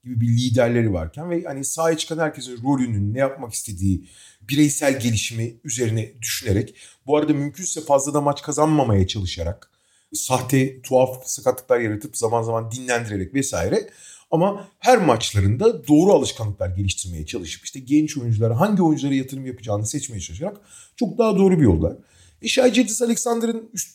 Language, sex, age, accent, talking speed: Turkish, male, 40-59, native, 145 wpm